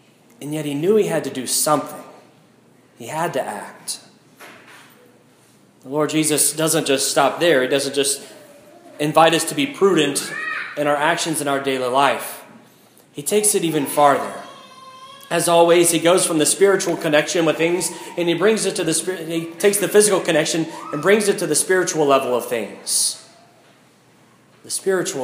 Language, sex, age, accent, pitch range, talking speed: English, male, 30-49, American, 150-195 Hz, 170 wpm